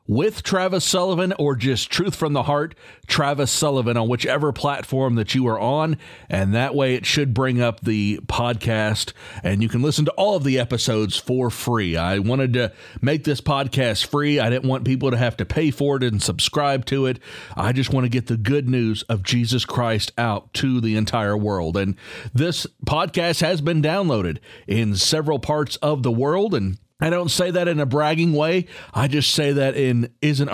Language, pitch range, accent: English, 110-145 Hz, American